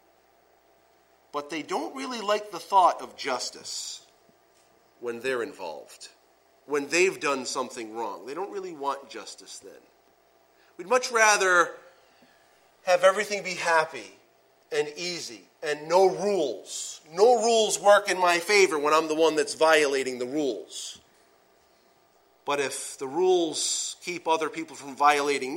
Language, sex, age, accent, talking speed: English, male, 40-59, American, 135 wpm